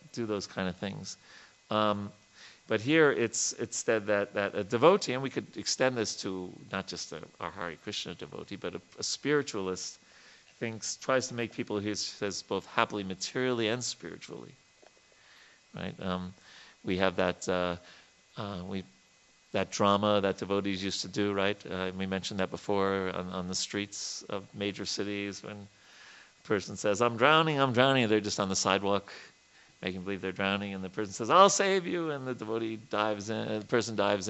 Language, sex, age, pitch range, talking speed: English, male, 40-59, 95-115 Hz, 180 wpm